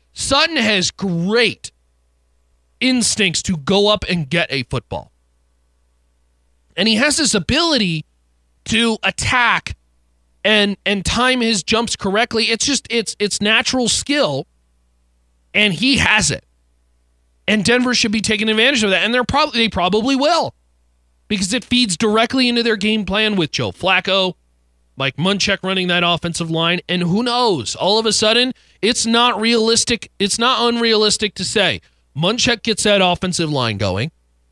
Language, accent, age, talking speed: English, American, 30-49, 150 wpm